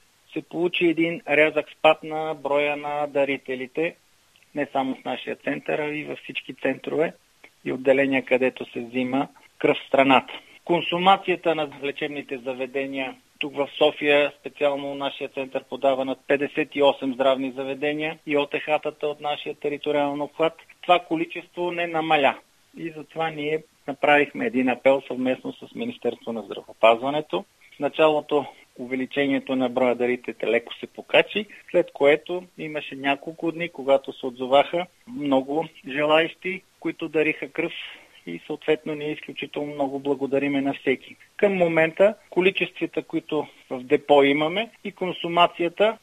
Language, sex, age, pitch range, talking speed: Bulgarian, male, 40-59, 140-175 Hz, 130 wpm